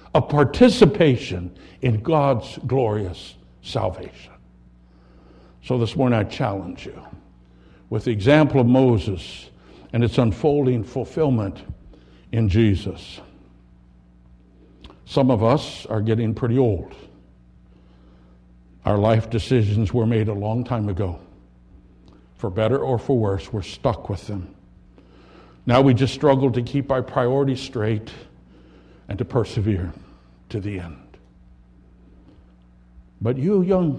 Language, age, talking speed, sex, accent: English, 60-79, 115 wpm, male, American